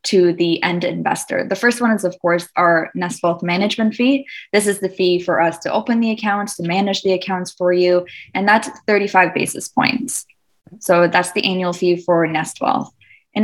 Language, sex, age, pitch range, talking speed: English, female, 20-39, 180-220 Hz, 200 wpm